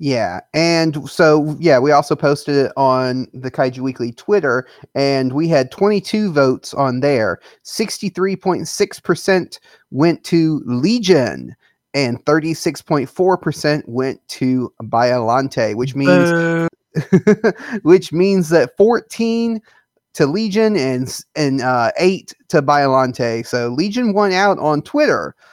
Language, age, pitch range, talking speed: English, 30-49, 135-180 Hz, 130 wpm